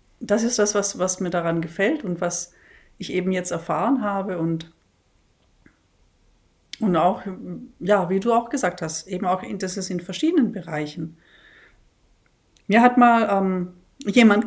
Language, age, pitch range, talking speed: German, 40-59, 170-215 Hz, 150 wpm